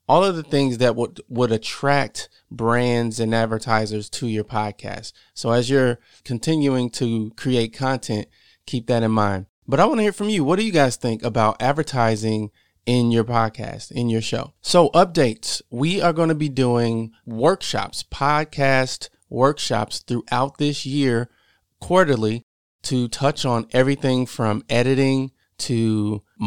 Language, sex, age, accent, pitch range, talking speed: English, male, 30-49, American, 115-140 Hz, 155 wpm